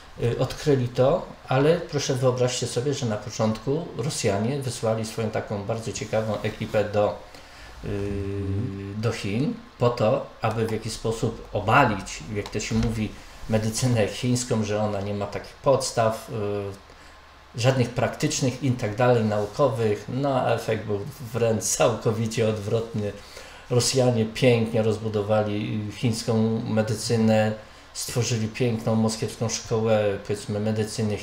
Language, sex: Polish, male